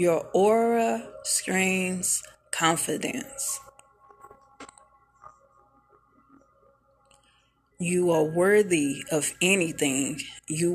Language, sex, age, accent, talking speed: English, female, 30-49, American, 55 wpm